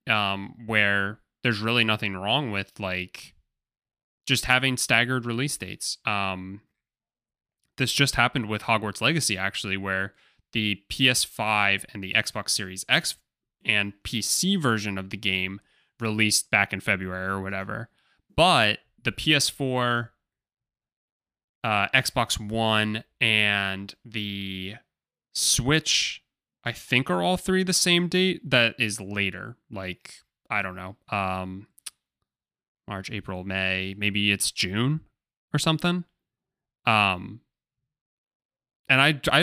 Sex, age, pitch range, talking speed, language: male, 20-39, 100-135 Hz, 120 wpm, English